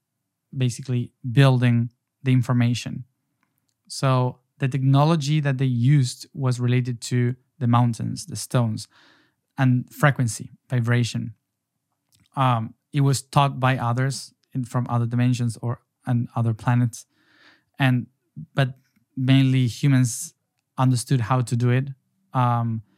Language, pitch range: English, 120-135 Hz